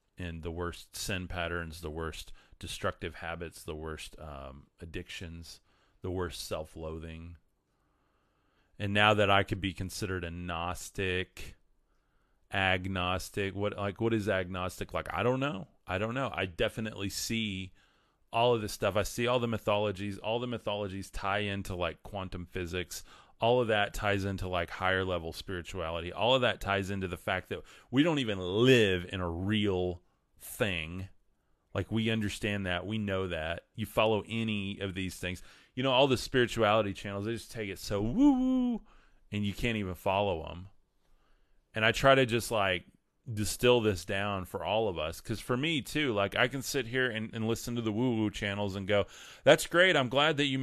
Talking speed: 180 wpm